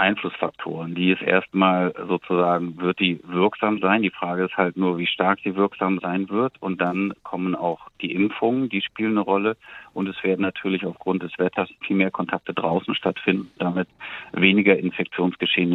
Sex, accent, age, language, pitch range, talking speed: male, German, 40-59, German, 90-95 Hz, 170 wpm